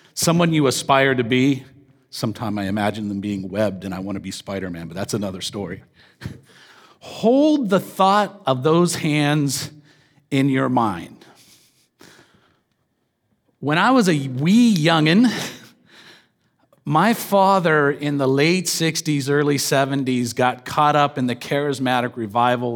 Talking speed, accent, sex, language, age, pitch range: 135 wpm, American, male, English, 40-59, 130-170 Hz